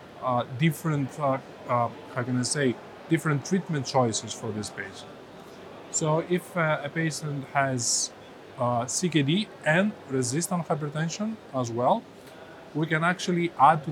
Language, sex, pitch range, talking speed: English, male, 125-155 Hz, 140 wpm